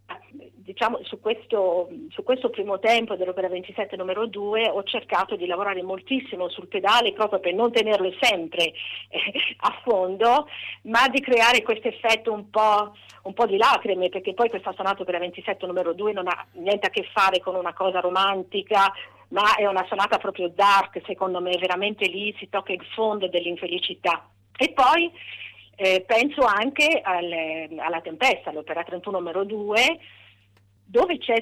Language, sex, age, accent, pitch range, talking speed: Italian, female, 40-59, native, 185-230 Hz, 155 wpm